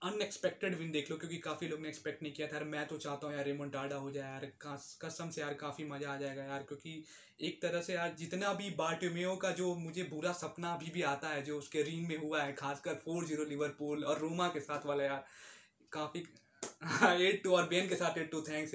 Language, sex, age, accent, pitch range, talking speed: Hindi, male, 20-39, native, 145-170 Hz, 240 wpm